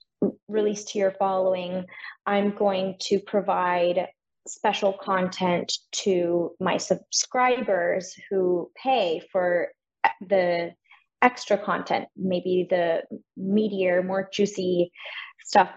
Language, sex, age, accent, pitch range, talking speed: English, female, 20-39, American, 175-205 Hz, 95 wpm